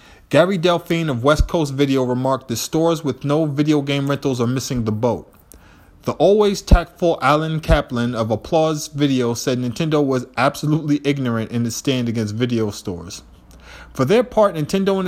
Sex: male